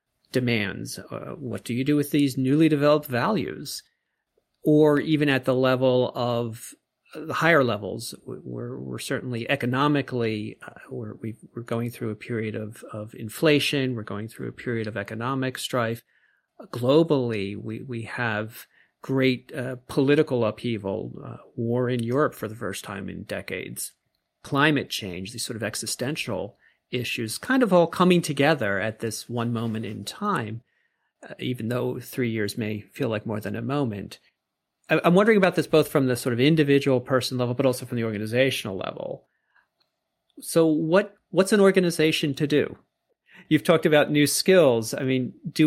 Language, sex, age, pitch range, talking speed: English, male, 40-59, 115-150 Hz, 160 wpm